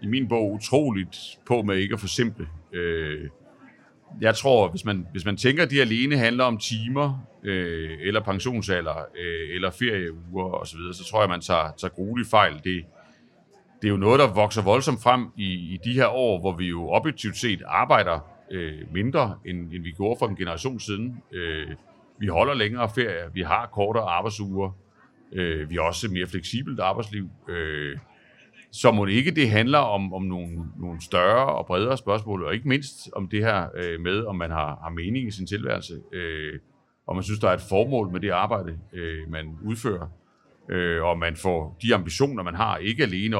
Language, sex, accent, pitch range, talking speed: Danish, male, native, 85-115 Hz, 190 wpm